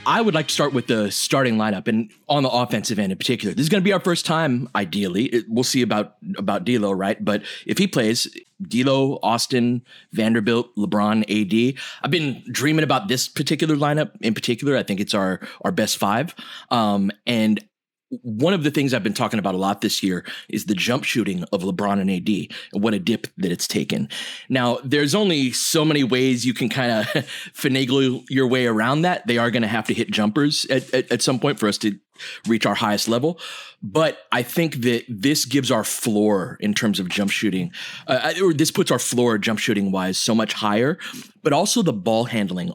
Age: 30-49